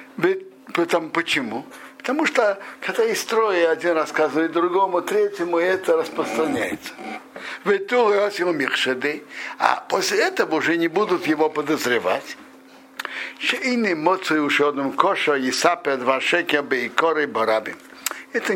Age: 60-79